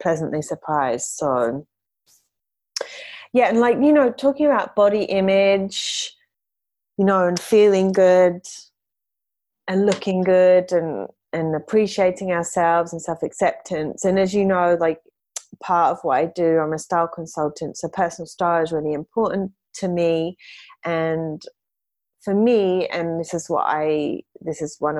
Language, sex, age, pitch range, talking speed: English, female, 30-49, 160-200 Hz, 140 wpm